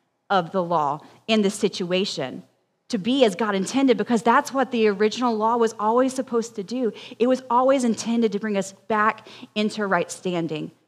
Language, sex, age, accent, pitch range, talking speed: English, female, 30-49, American, 210-280 Hz, 180 wpm